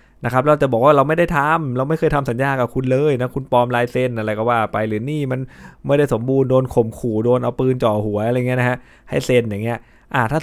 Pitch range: 105-125 Hz